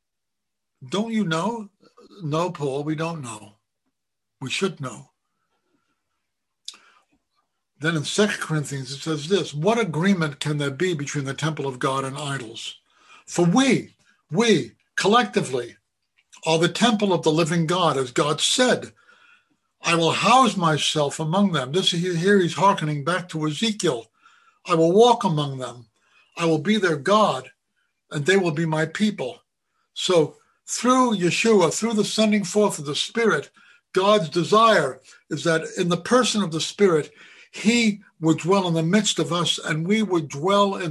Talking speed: 155 wpm